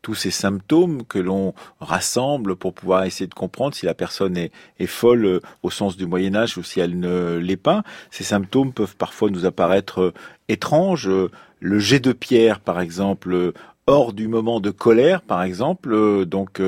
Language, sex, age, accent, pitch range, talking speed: French, male, 40-59, French, 100-130 Hz, 175 wpm